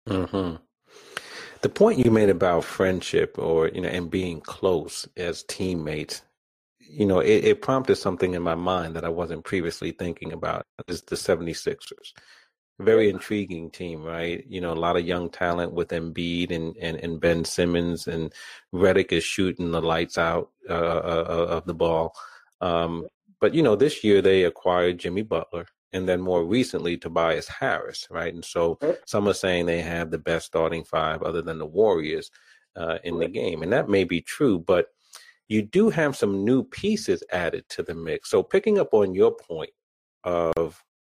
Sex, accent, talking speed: male, American, 175 wpm